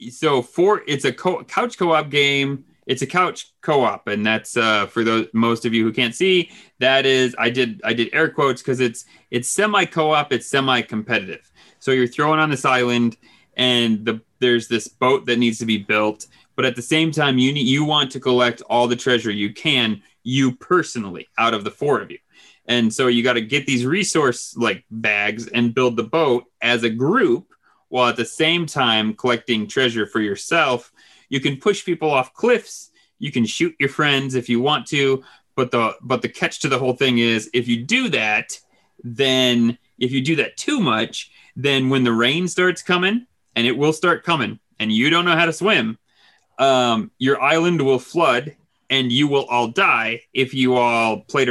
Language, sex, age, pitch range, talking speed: English, male, 30-49, 115-145 Hz, 200 wpm